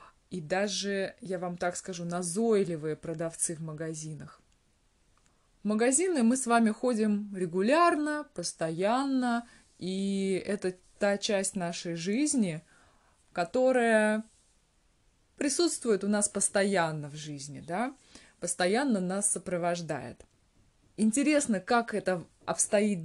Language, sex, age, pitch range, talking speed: Russian, female, 20-39, 175-225 Hz, 95 wpm